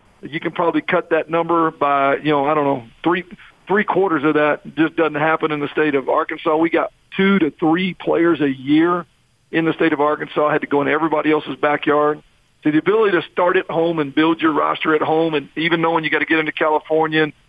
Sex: male